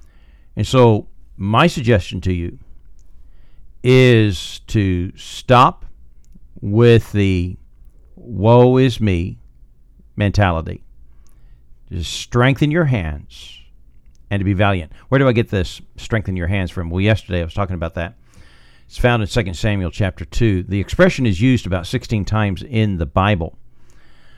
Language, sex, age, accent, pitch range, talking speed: English, male, 50-69, American, 90-120 Hz, 140 wpm